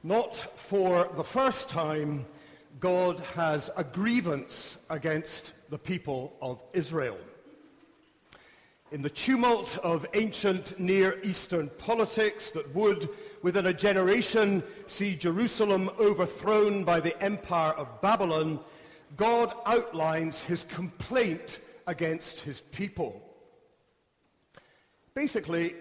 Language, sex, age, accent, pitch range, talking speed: English, male, 50-69, British, 155-205 Hz, 100 wpm